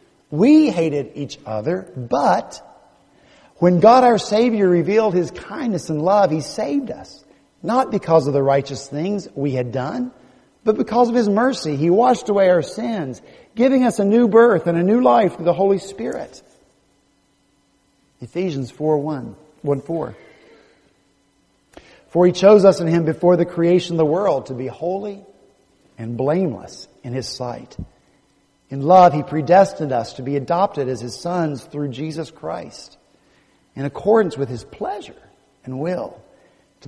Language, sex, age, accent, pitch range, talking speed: English, male, 50-69, American, 135-185 Hz, 155 wpm